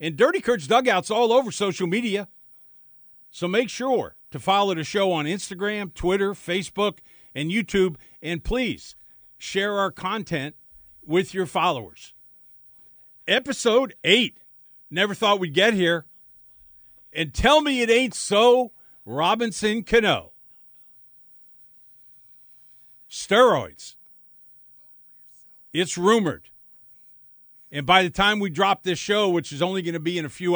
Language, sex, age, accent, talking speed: English, male, 50-69, American, 125 wpm